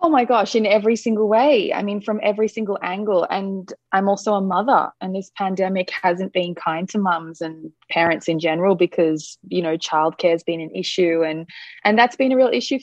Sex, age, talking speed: female, 20-39, 210 wpm